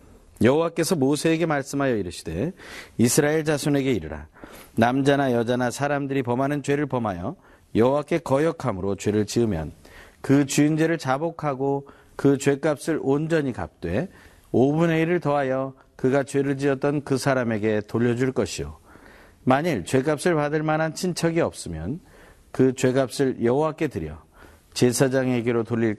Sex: male